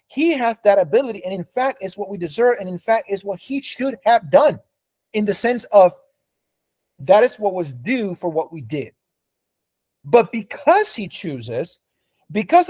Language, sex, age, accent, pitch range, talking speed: English, male, 30-49, American, 155-240 Hz, 180 wpm